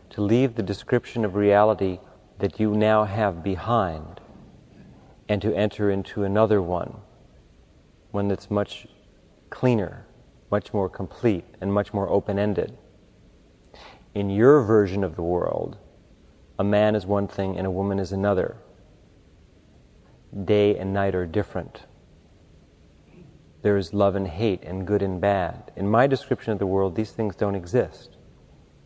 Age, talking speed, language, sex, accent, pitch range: 40-59, 140 wpm, English, male, American, 95-110 Hz